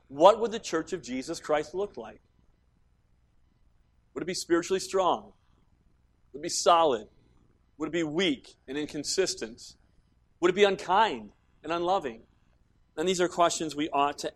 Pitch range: 125-155 Hz